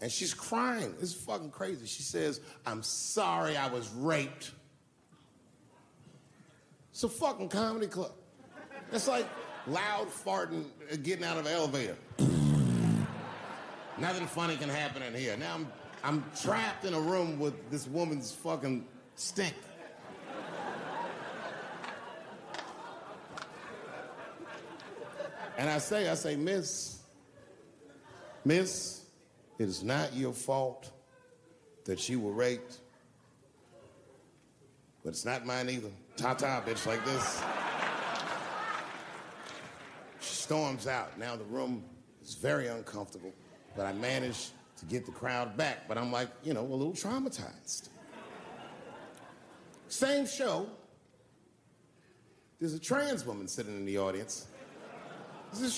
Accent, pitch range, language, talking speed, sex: American, 120-170 Hz, English, 115 wpm, male